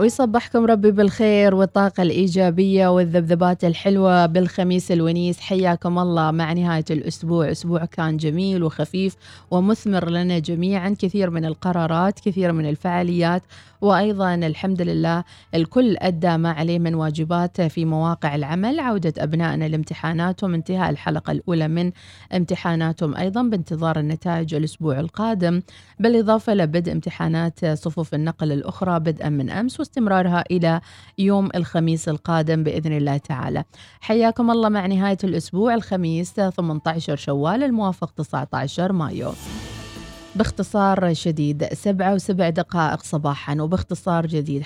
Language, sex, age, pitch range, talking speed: Arabic, female, 30-49, 160-190 Hz, 115 wpm